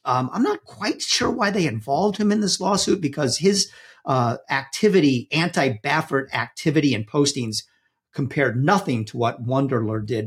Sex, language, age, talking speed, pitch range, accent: male, English, 50-69, 150 wpm, 120-160 Hz, American